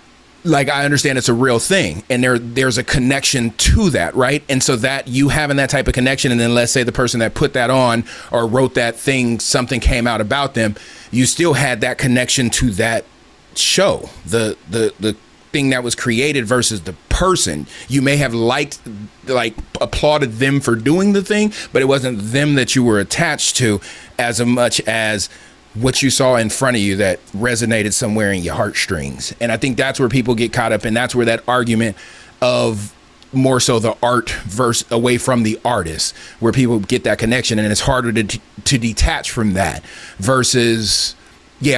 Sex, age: male, 30-49